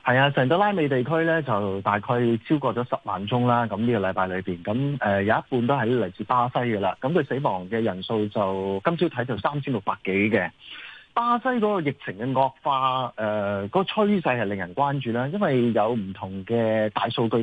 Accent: native